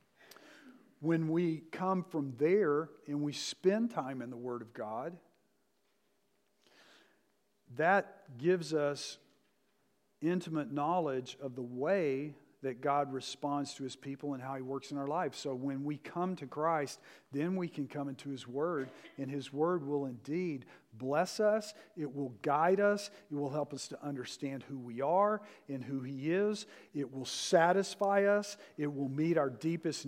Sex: male